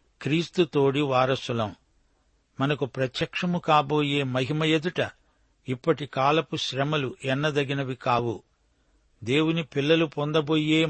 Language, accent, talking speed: Telugu, native, 85 wpm